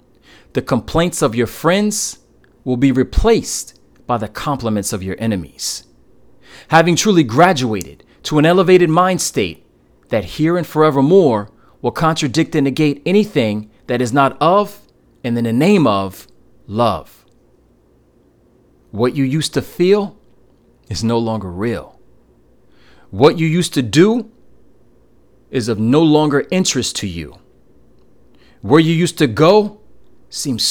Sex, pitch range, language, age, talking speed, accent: male, 110-165 Hz, English, 30-49, 135 wpm, American